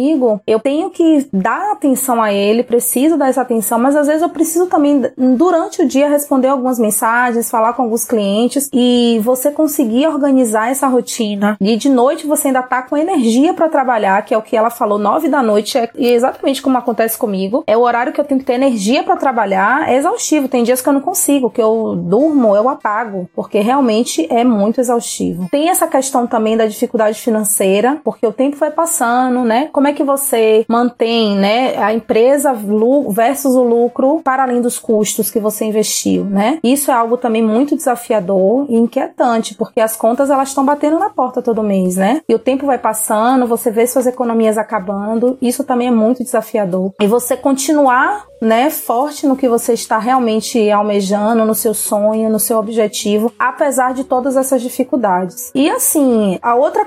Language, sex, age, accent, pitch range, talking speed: Portuguese, female, 20-39, Brazilian, 220-275 Hz, 190 wpm